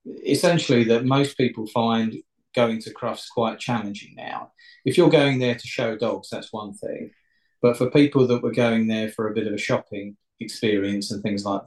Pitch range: 105-125 Hz